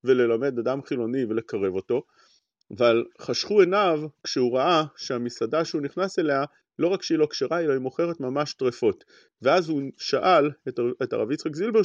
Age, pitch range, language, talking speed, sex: 40-59, 130-190 Hz, English, 100 wpm, male